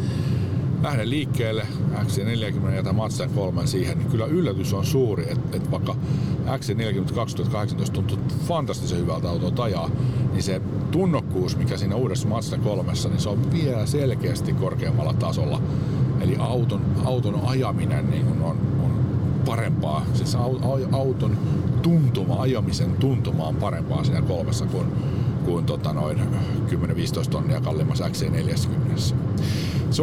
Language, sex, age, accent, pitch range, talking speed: Finnish, male, 50-69, native, 125-140 Hz, 120 wpm